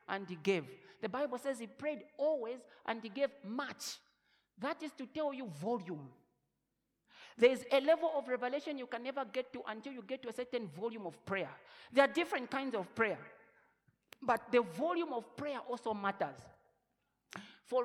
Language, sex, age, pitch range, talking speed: English, male, 50-69, 225-300 Hz, 180 wpm